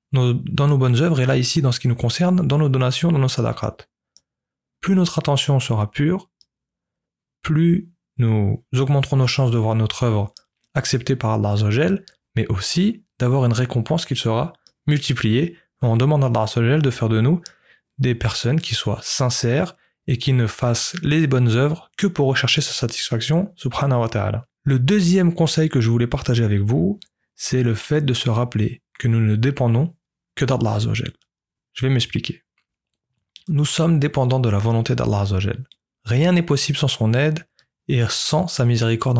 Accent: French